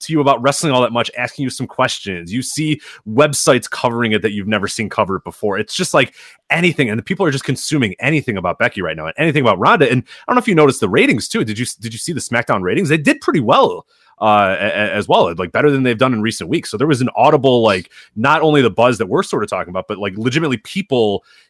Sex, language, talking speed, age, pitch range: male, English, 260 wpm, 30-49, 100-135 Hz